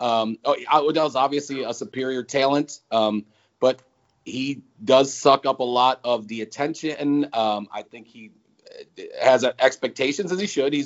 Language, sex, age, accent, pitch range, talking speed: English, male, 40-59, American, 115-140 Hz, 150 wpm